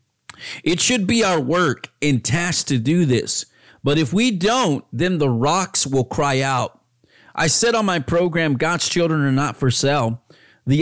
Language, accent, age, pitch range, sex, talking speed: English, American, 40-59, 125-180 Hz, male, 175 wpm